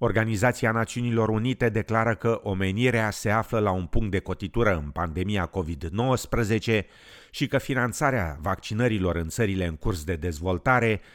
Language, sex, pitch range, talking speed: Romanian, male, 100-170 Hz, 140 wpm